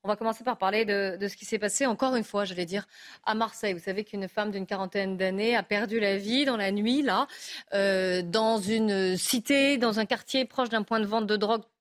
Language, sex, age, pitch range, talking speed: French, female, 30-49, 215-265 Hz, 245 wpm